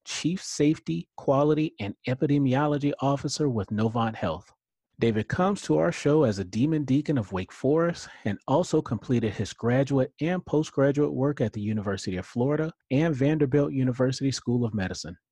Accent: American